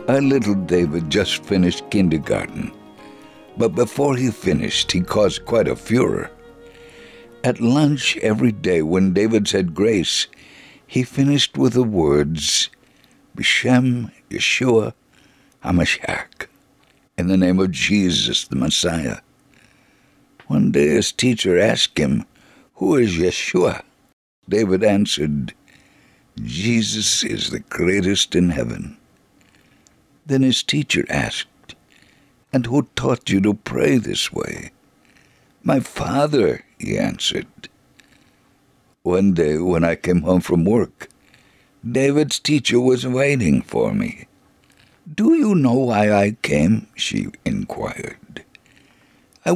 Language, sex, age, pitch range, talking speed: English, male, 60-79, 95-135 Hz, 115 wpm